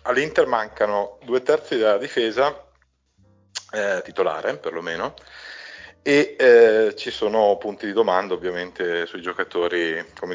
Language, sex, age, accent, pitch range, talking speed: Italian, male, 30-49, native, 95-120 Hz, 115 wpm